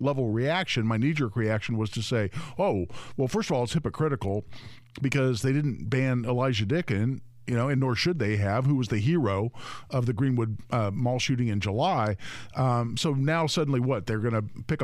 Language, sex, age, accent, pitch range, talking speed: English, male, 50-69, American, 115-140 Hz, 200 wpm